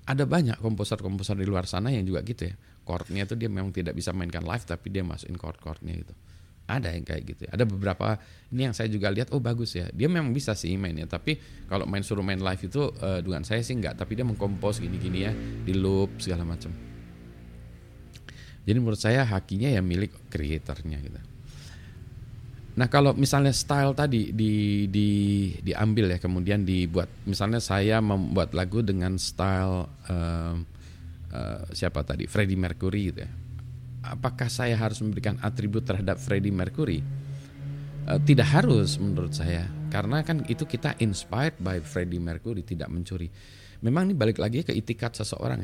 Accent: native